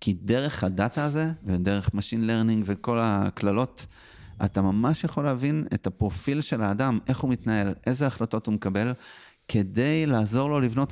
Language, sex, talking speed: Hebrew, male, 155 wpm